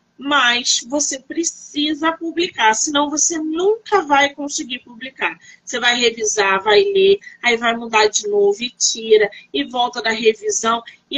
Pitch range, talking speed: 225-290 Hz, 145 wpm